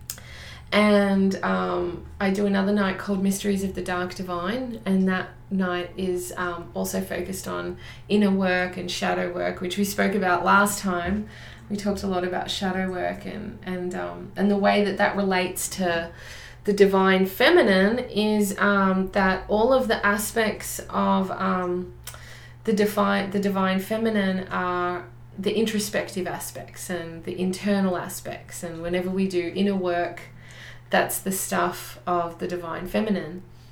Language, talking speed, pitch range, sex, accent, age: English, 155 wpm, 180-210 Hz, female, Australian, 20-39